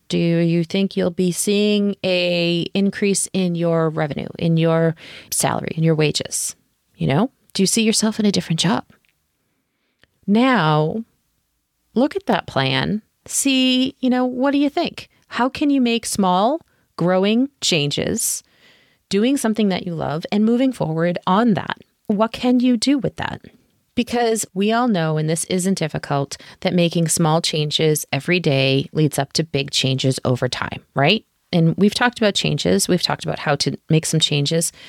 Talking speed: 165 wpm